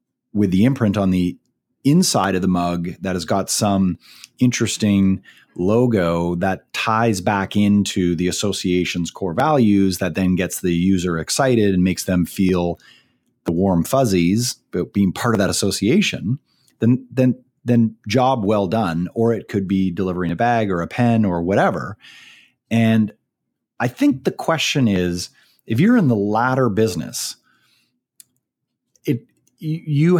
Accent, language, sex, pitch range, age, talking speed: American, English, male, 90-125 Hz, 30-49, 145 wpm